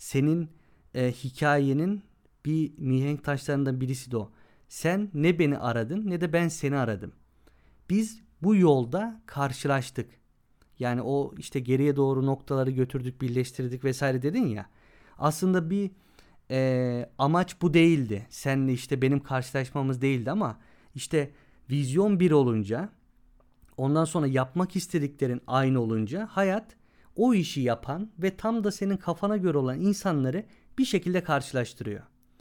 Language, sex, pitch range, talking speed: Turkish, male, 130-175 Hz, 130 wpm